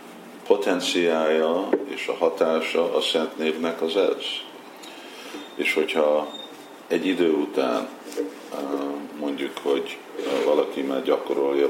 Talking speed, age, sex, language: 95 wpm, 50-69, male, Hungarian